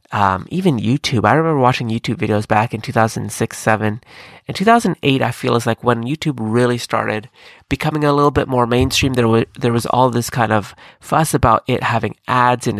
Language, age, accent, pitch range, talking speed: English, 30-49, American, 110-140 Hz, 215 wpm